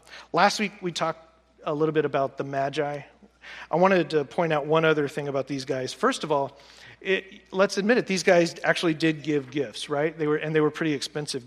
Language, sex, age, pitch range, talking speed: English, male, 40-59, 150-210 Hz, 220 wpm